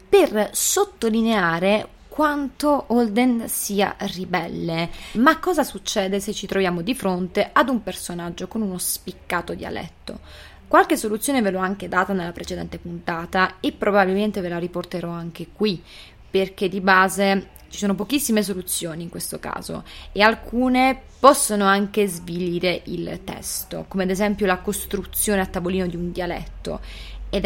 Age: 20-39